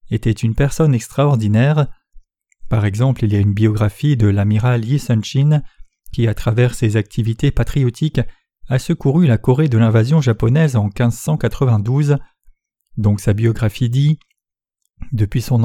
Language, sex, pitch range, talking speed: French, male, 115-140 Hz, 140 wpm